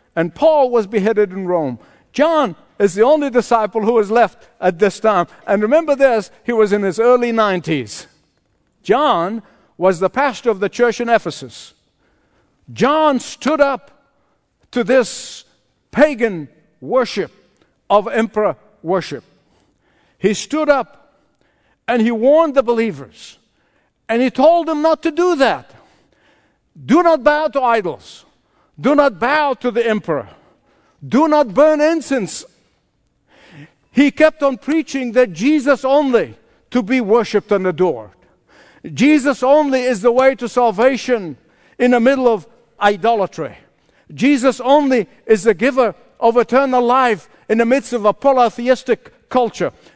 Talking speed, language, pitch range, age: 140 wpm, English, 210-275 Hz, 60-79